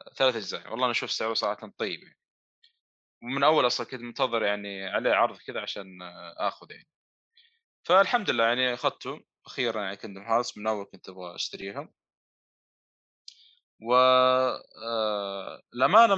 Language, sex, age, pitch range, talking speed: Arabic, male, 20-39, 115-175 Hz, 130 wpm